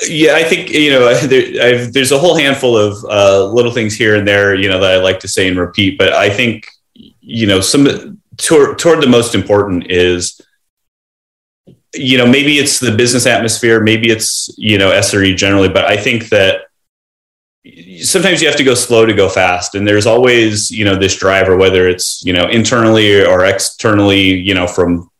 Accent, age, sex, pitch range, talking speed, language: American, 30-49, male, 90-115 Hz, 190 wpm, English